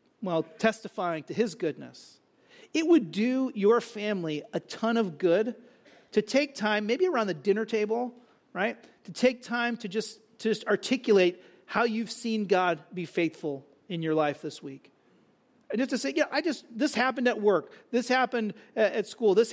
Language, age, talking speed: English, 40-59, 175 wpm